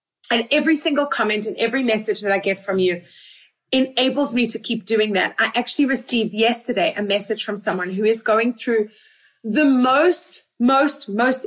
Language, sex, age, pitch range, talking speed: English, female, 30-49, 210-270 Hz, 180 wpm